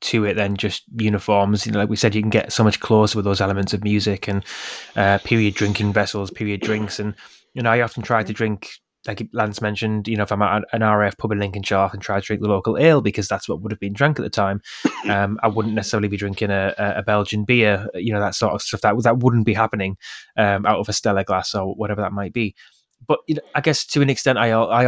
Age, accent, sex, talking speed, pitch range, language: 20-39, British, male, 260 wpm, 105-115 Hz, English